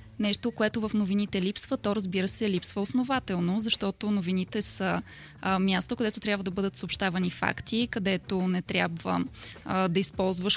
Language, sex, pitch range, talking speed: Bulgarian, female, 185-220 Hz, 155 wpm